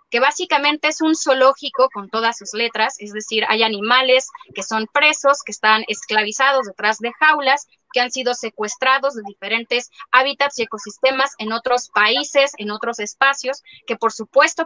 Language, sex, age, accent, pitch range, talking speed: Spanish, female, 20-39, Mexican, 220-285 Hz, 165 wpm